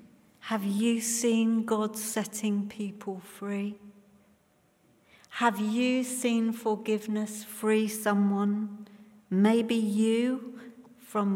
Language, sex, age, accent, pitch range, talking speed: English, female, 50-69, British, 185-225 Hz, 85 wpm